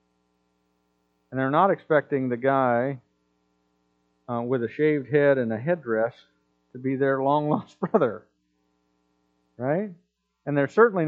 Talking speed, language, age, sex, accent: 125 wpm, English, 50-69, male, American